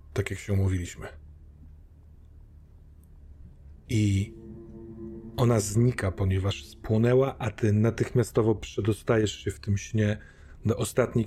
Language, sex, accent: Polish, male, native